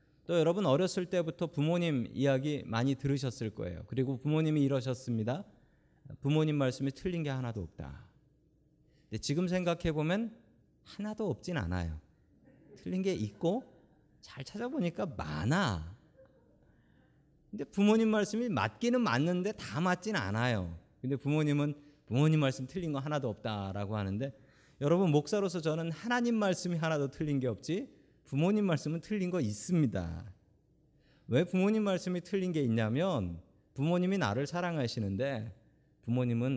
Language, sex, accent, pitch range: Korean, male, native, 115-175 Hz